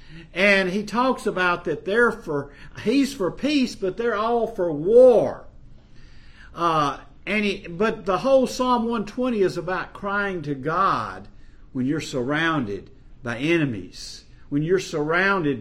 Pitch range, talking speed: 145-225 Hz, 125 wpm